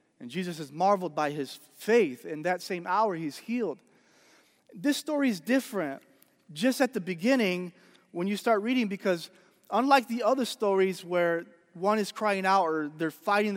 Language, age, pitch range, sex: English, 30-49, 170-210 Hz, male